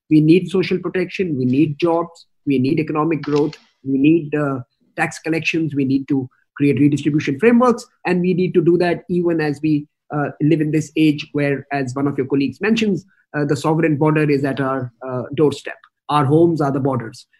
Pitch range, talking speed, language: 145-180 Hz, 195 wpm, Hindi